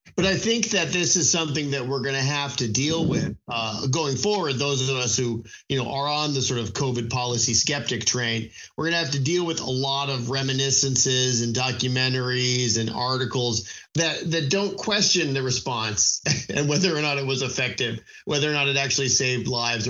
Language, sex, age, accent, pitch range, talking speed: English, male, 40-59, American, 115-150 Hz, 205 wpm